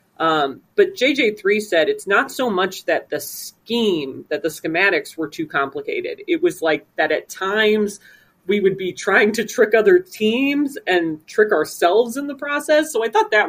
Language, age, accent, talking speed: English, 30-49, American, 185 wpm